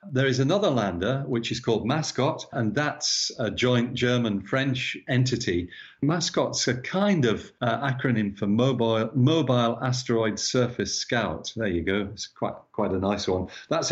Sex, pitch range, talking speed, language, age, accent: male, 105-135 Hz, 155 wpm, English, 40-59, British